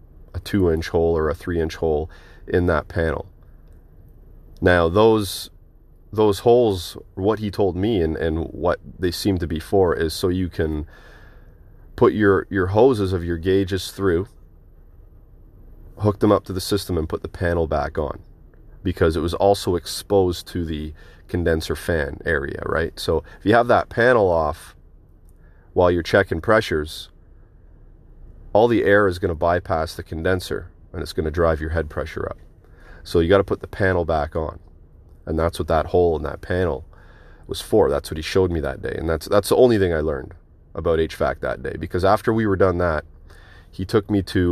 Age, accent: 30-49, American